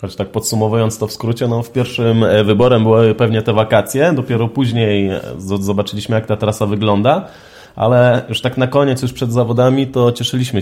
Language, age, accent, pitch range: Polish, 20-39, native, 100-115 Hz